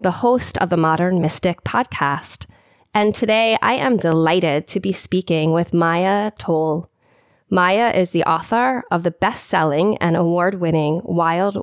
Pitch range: 165-205 Hz